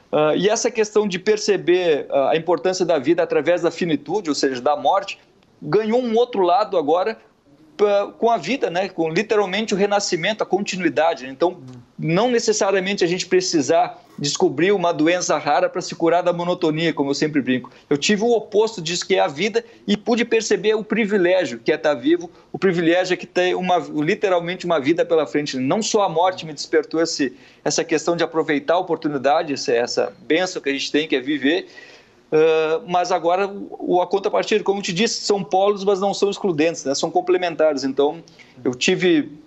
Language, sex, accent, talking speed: English, male, Brazilian, 190 wpm